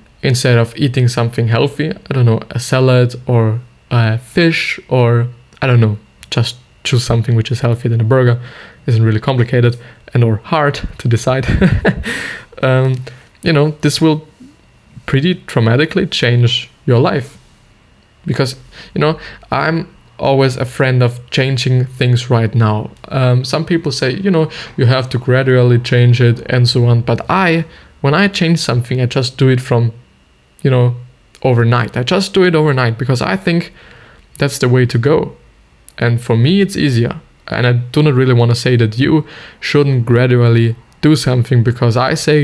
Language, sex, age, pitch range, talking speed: English, male, 20-39, 120-145 Hz, 170 wpm